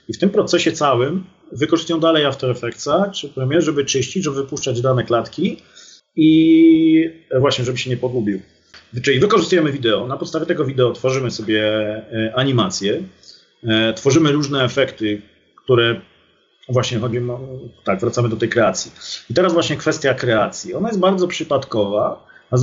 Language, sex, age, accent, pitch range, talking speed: Polish, male, 40-59, native, 115-140 Hz, 150 wpm